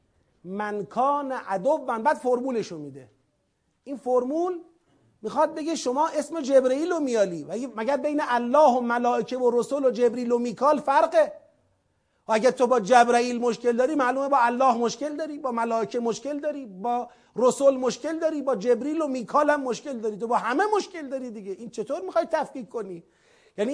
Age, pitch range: 40-59, 210-285 Hz